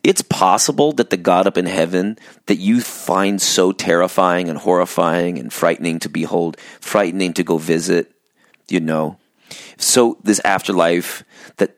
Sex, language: male, English